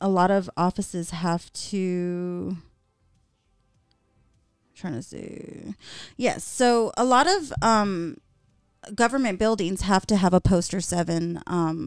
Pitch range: 175-225 Hz